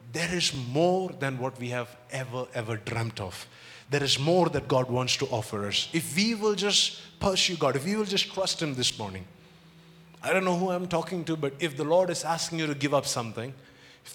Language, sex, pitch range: English, male, 130-180 Hz